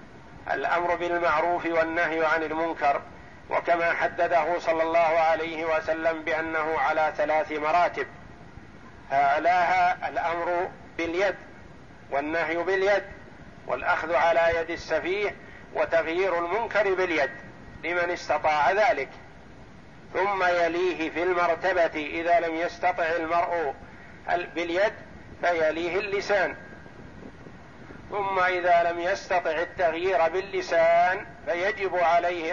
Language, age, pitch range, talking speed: Arabic, 50-69, 155-185 Hz, 90 wpm